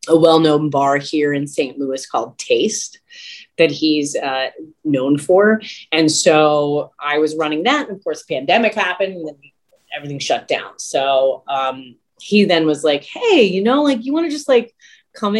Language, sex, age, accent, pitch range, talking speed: English, female, 30-49, American, 140-195 Hz, 175 wpm